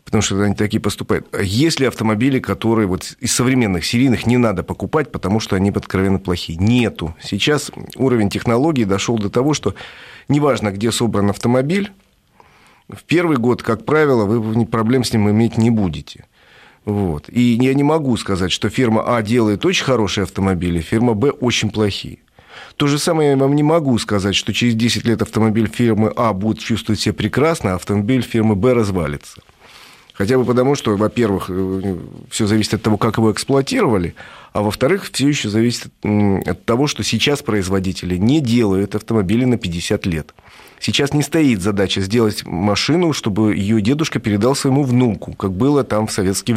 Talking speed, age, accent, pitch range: 170 wpm, 40-59, native, 100-125 Hz